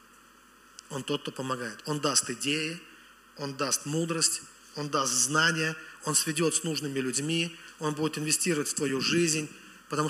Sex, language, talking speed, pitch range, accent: male, Russian, 150 wpm, 145-170 Hz, native